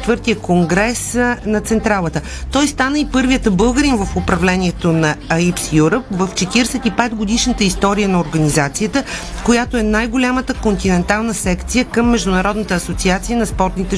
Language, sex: Bulgarian, female